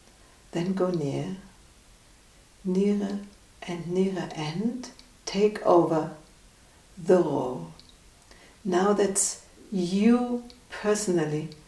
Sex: female